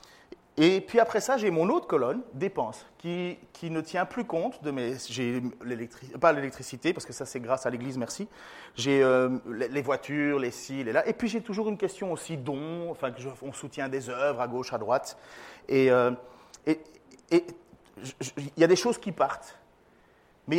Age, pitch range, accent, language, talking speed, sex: 30-49, 135-195 Hz, French, French, 190 wpm, male